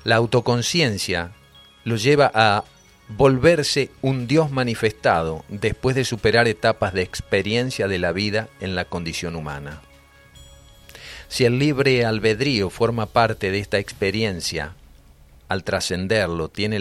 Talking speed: 120 wpm